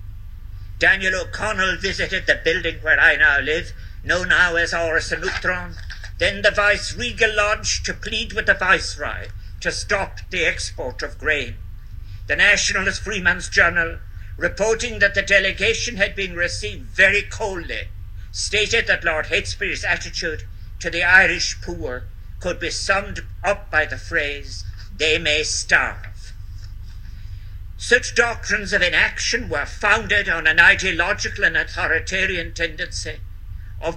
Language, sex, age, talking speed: English, male, 60-79, 130 wpm